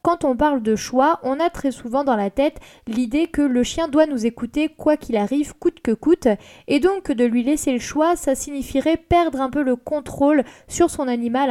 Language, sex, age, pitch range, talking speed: French, female, 20-39, 225-280 Hz, 220 wpm